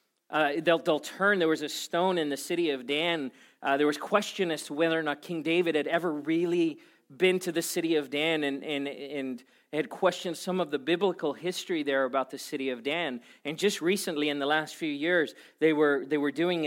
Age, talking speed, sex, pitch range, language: 40-59, 225 wpm, male, 140-180 Hz, English